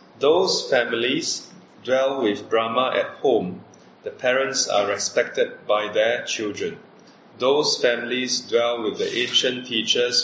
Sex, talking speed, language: male, 125 wpm, English